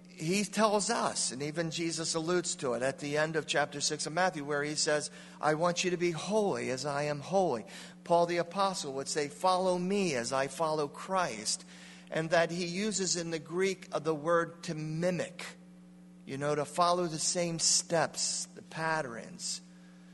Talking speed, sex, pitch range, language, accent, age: 185 wpm, male, 145-180 Hz, English, American, 40-59